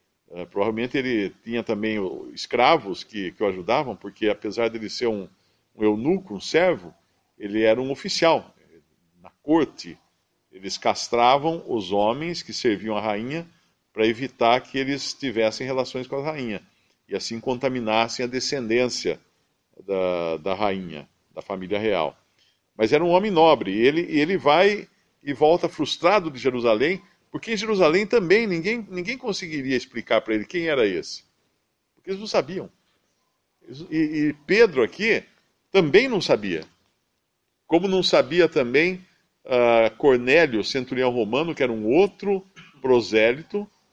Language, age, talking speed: Portuguese, 50-69, 140 wpm